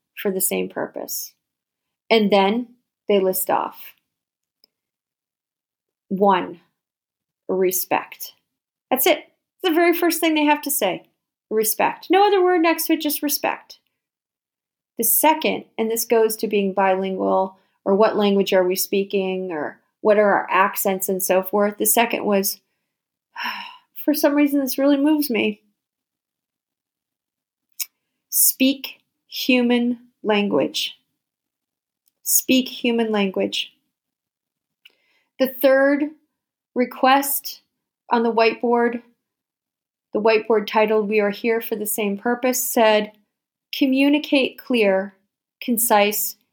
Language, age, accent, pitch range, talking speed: English, 40-59, American, 210-275 Hz, 115 wpm